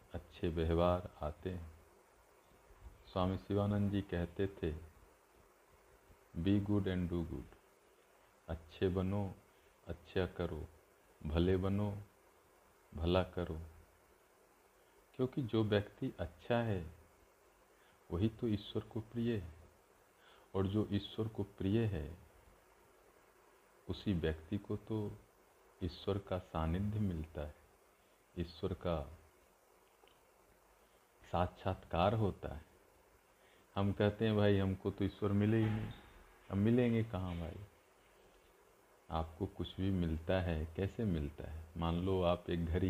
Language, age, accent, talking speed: Hindi, 50-69, native, 110 wpm